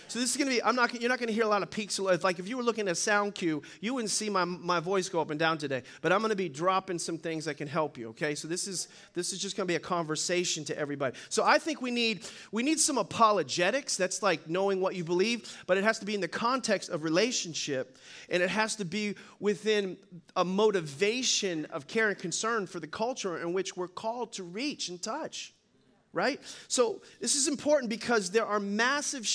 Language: English